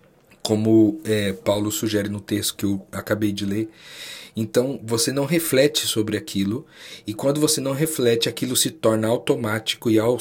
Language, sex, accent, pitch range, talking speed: Portuguese, male, Brazilian, 110-140 Hz, 165 wpm